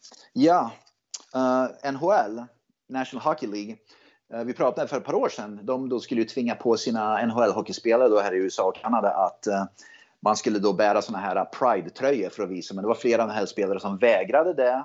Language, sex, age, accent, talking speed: Swedish, male, 30-49, native, 215 wpm